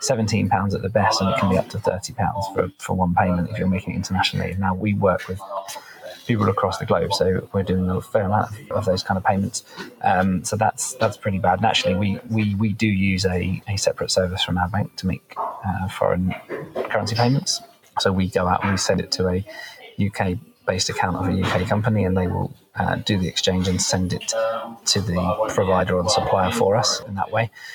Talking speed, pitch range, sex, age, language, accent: 225 wpm, 90-105 Hz, male, 20-39, English, British